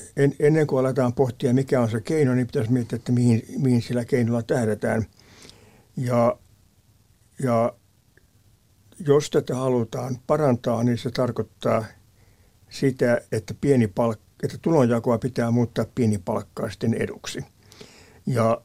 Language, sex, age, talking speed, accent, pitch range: Finnish, male, 60-79, 120 wpm, native, 110-130 Hz